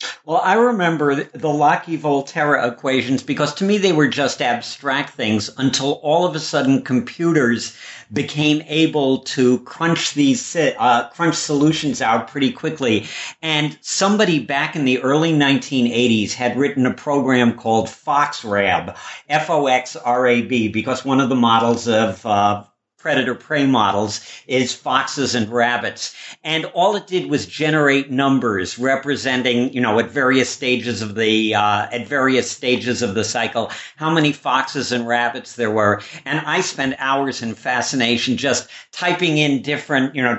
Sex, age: male, 50-69